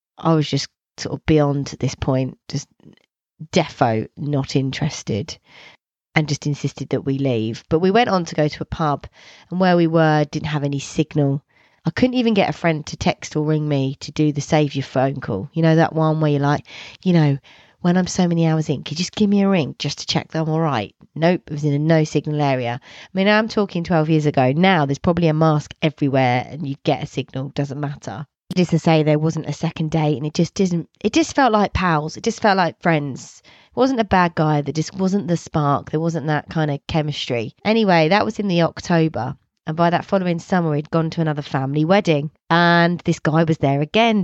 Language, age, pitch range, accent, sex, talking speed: English, 30-49, 145-170 Hz, British, female, 235 wpm